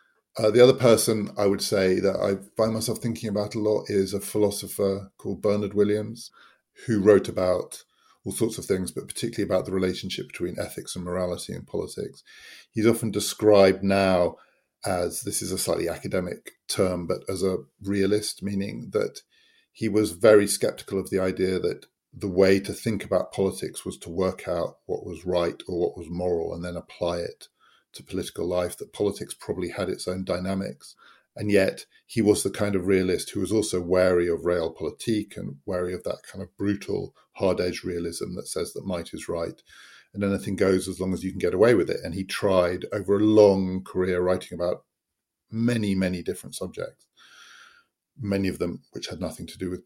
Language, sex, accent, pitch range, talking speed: English, male, British, 90-105 Hz, 190 wpm